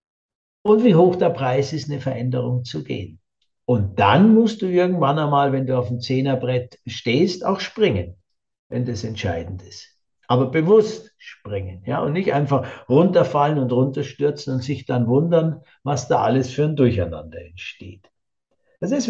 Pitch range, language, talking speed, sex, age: 125-175 Hz, German, 160 wpm, male, 60-79